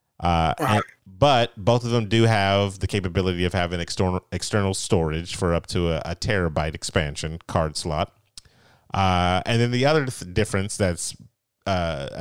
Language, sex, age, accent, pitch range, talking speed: English, male, 30-49, American, 85-110 Hz, 160 wpm